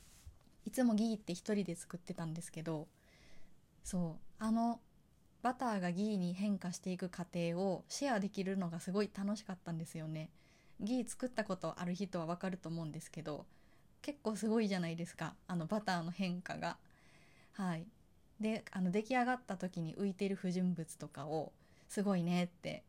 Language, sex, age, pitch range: Japanese, female, 20-39, 170-210 Hz